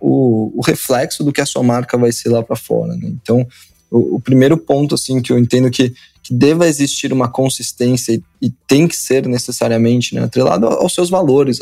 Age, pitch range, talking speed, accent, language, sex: 20-39, 120-150 Hz, 205 wpm, Brazilian, Portuguese, male